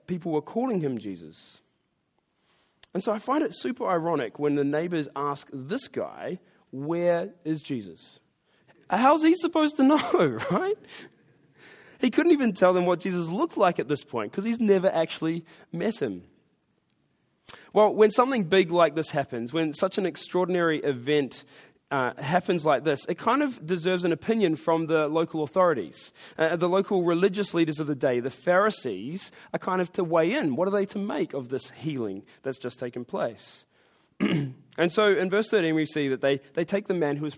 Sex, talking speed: male, 185 wpm